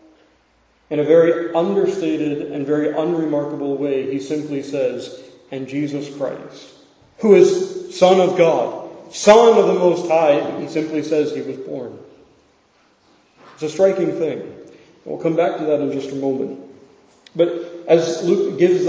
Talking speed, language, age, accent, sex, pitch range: 150 wpm, English, 40-59, American, male, 150-180 Hz